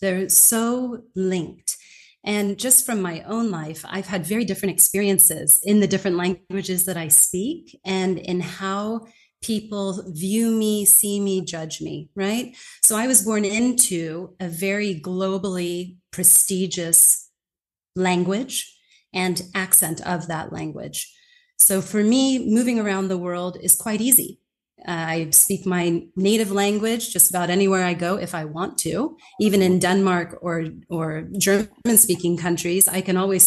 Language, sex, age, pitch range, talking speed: English, female, 30-49, 180-210 Hz, 150 wpm